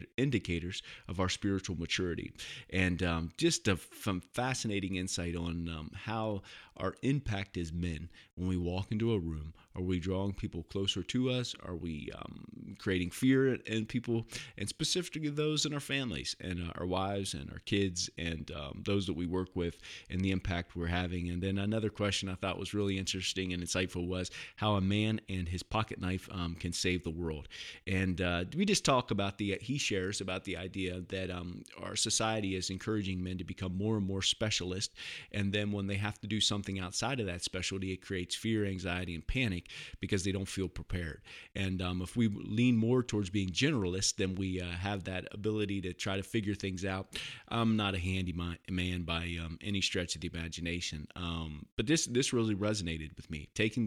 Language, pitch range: English, 85-105 Hz